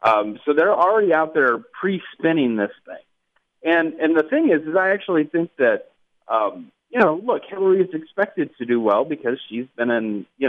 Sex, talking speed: male, 195 wpm